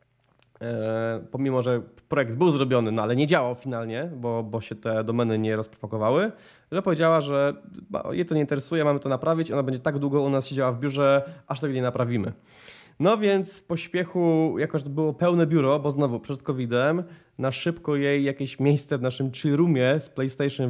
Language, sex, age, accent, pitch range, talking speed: Polish, male, 20-39, native, 120-145 Hz, 185 wpm